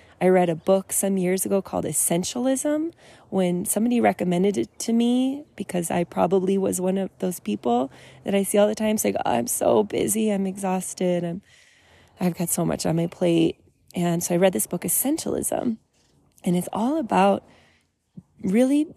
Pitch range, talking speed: 175-220 Hz, 170 wpm